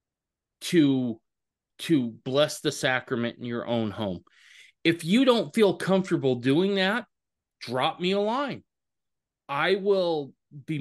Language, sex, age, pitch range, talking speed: English, male, 30-49, 120-160 Hz, 130 wpm